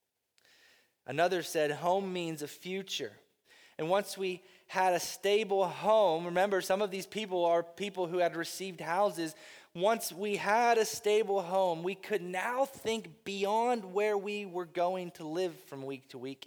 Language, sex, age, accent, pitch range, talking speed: English, male, 20-39, American, 160-215 Hz, 165 wpm